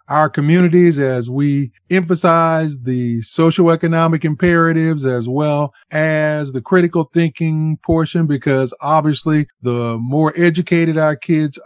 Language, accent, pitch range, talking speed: English, American, 135-165 Hz, 115 wpm